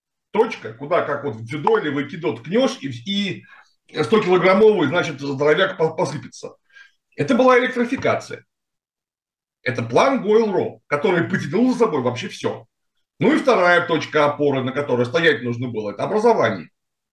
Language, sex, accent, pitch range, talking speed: Russian, male, native, 145-215 Hz, 140 wpm